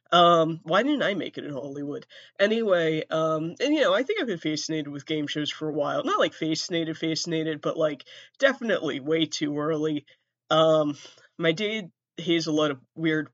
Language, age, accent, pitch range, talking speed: English, 20-39, American, 150-170 Hz, 195 wpm